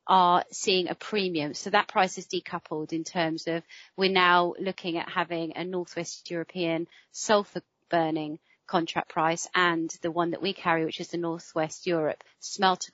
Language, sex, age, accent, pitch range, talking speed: English, female, 30-49, British, 165-185 Hz, 165 wpm